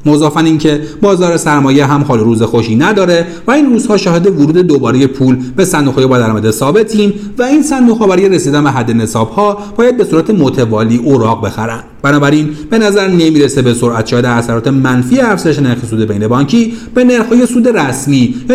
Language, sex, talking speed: Persian, male, 165 wpm